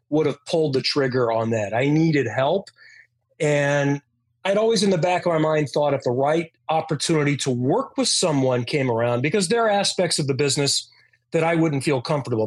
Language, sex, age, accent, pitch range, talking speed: English, male, 30-49, American, 125-160 Hz, 200 wpm